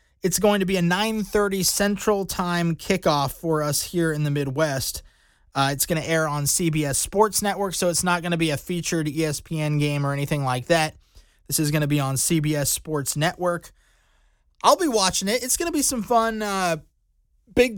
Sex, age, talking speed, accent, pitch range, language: male, 20-39, 200 wpm, American, 150-190 Hz, English